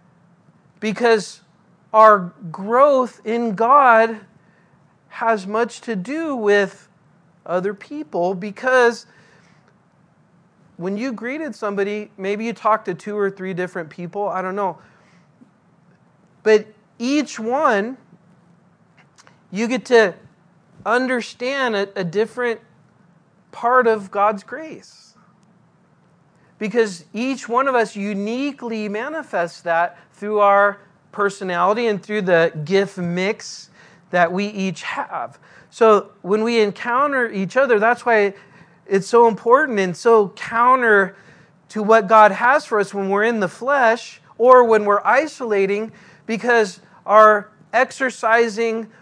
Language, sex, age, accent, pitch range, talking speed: English, male, 40-59, American, 180-230 Hz, 115 wpm